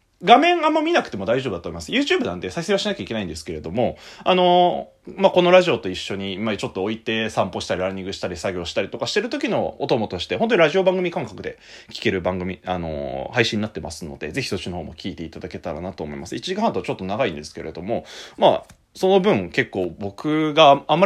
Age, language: 30-49, Japanese